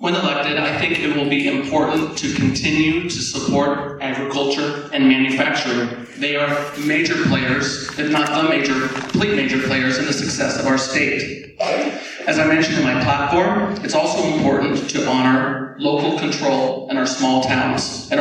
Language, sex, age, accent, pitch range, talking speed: English, male, 40-59, American, 130-150 Hz, 165 wpm